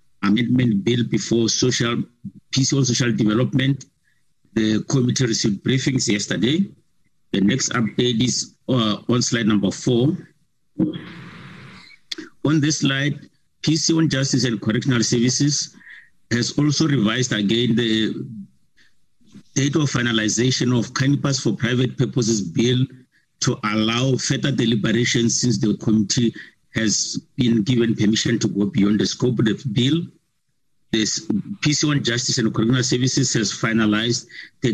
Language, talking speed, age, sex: English, 130 wpm, 50-69, male